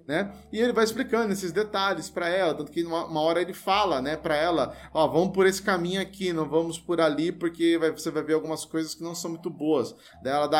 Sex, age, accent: male, 20-39, Brazilian